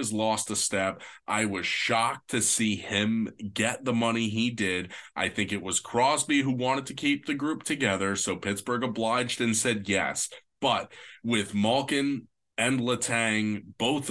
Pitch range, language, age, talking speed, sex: 100-115 Hz, English, 20-39, 165 wpm, male